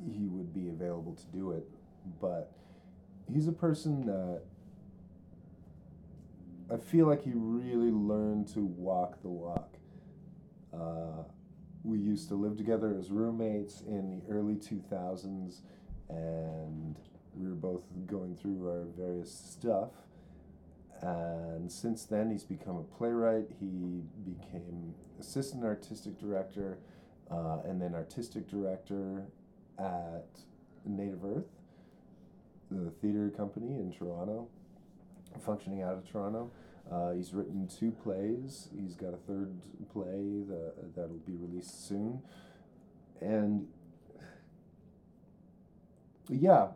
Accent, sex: American, male